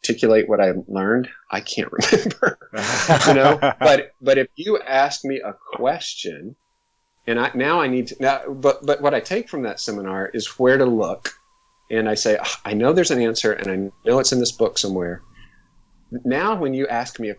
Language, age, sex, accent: English, 40-59, male, American